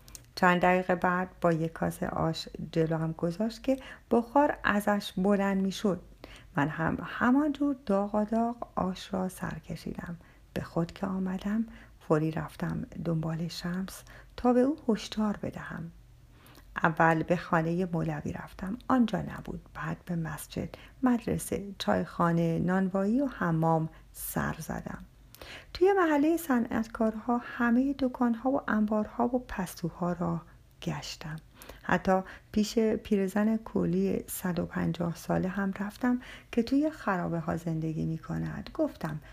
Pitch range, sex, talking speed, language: 170-235 Hz, female, 125 wpm, Persian